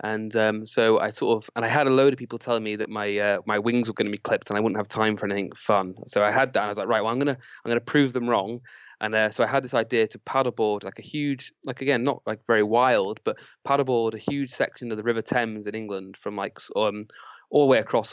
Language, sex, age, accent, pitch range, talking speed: English, male, 20-39, British, 105-125 Hz, 285 wpm